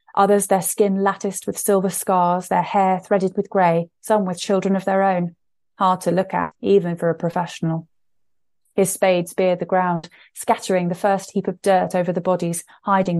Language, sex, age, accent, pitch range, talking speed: English, female, 30-49, British, 180-210 Hz, 185 wpm